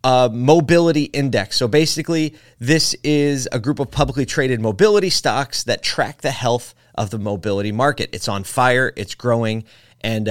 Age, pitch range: 30-49, 100-130 Hz